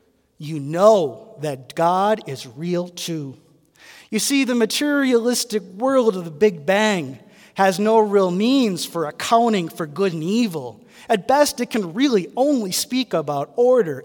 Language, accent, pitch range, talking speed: English, American, 160-250 Hz, 150 wpm